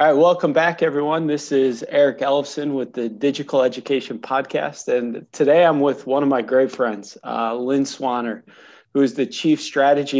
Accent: American